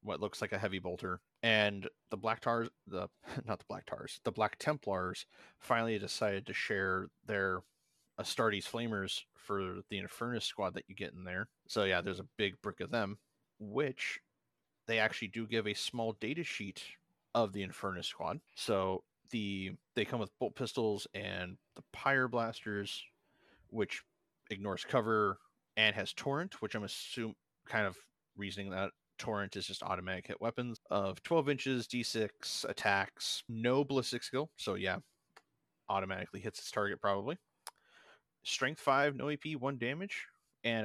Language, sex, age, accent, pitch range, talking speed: English, male, 30-49, American, 100-130 Hz, 155 wpm